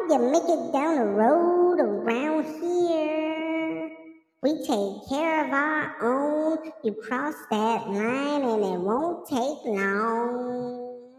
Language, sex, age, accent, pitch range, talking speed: English, male, 50-69, American, 225-320 Hz, 125 wpm